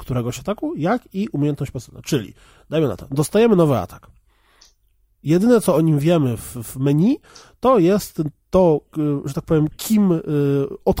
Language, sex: Polish, male